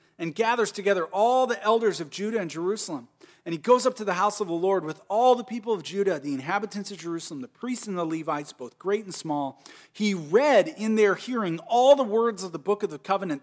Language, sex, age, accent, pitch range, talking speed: English, male, 40-59, American, 140-195 Hz, 235 wpm